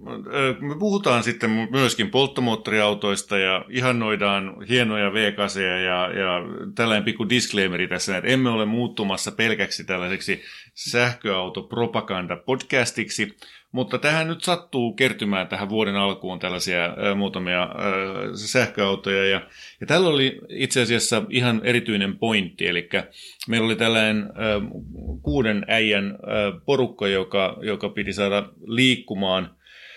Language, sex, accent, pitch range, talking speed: Finnish, male, native, 100-125 Hz, 110 wpm